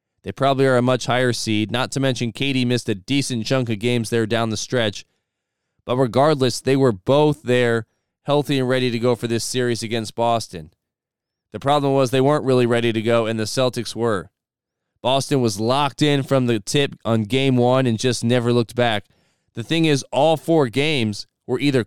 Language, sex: English, male